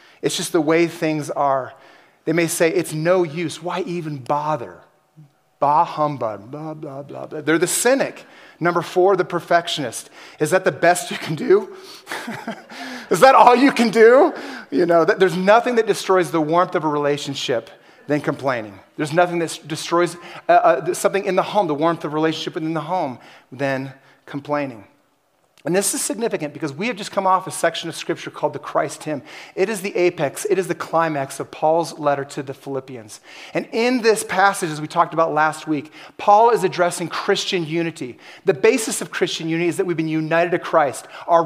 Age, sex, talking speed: 30-49, male, 190 wpm